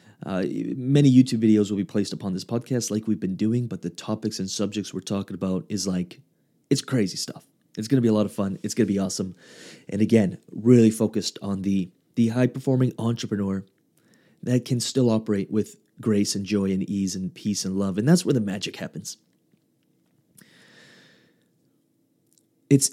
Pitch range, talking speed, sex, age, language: 105-130 Hz, 185 wpm, male, 30-49, English